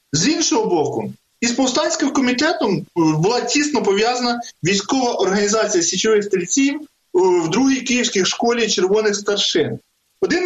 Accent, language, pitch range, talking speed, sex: native, Ukrainian, 185-250 Hz, 115 wpm, male